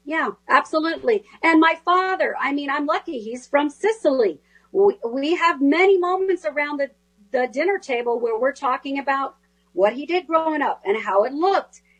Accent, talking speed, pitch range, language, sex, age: American, 175 wpm, 245-345 Hz, English, female, 40-59